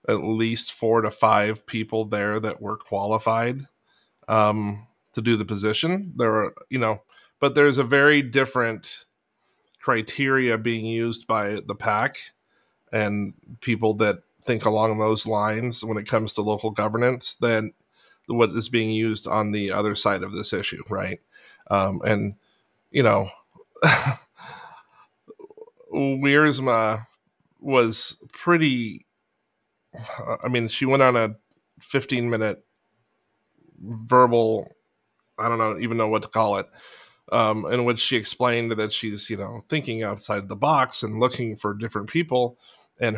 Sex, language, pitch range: male, English, 110-125 Hz